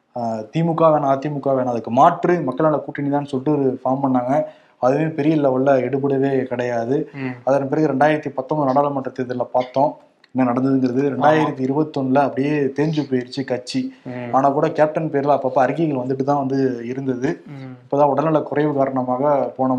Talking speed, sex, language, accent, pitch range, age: 150 wpm, male, Tamil, native, 130-150 Hz, 20-39